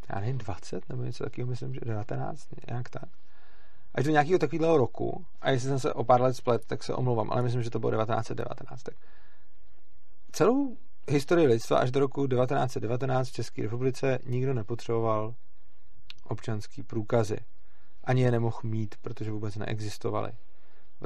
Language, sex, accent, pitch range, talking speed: Czech, male, native, 115-130 Hz, 160 wpm